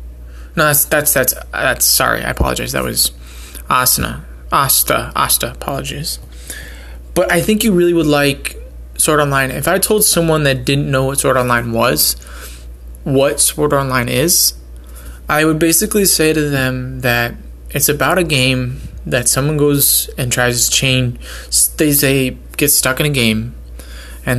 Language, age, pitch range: English, 20-39, 115-150 Hz